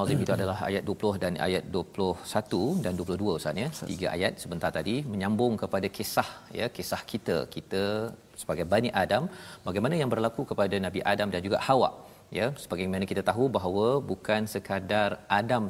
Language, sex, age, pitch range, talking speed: Malayalam, male, 40-59, 95-120 Hz, 155 wpm